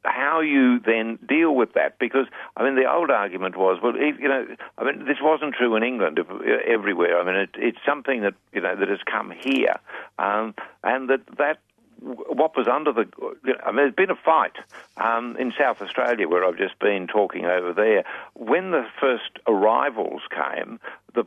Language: English